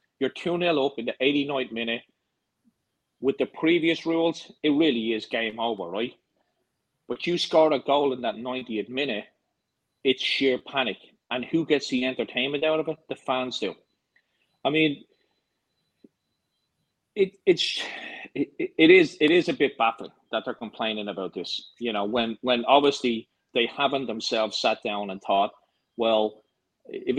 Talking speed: 155 wpm